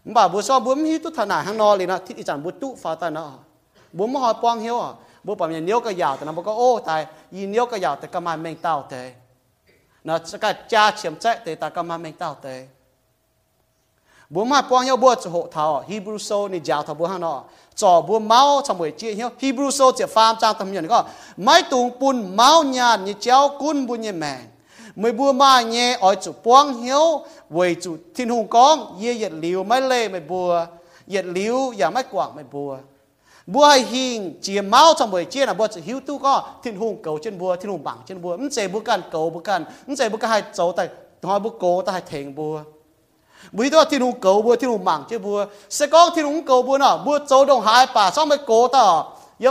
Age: 30-49